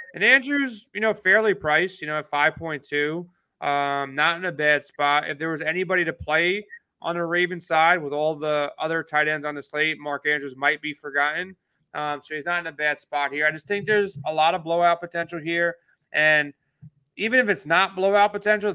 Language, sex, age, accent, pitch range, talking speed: English, male, 30-49, American, 150-170 Hz, 220 wpm